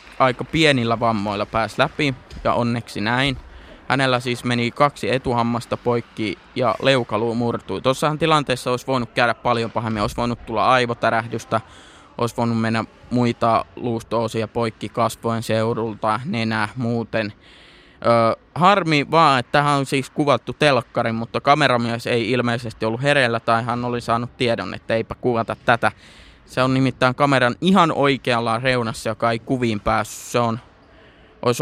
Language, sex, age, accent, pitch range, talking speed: Finnish, male, 20-39, native, 115-130 Hz, 140 wpm